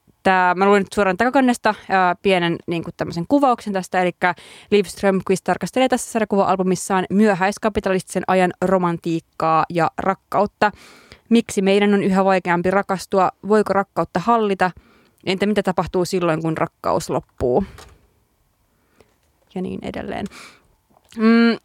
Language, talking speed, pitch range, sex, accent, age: Finnish, 120 wpm, 180-225 Hz, female, native, 20-39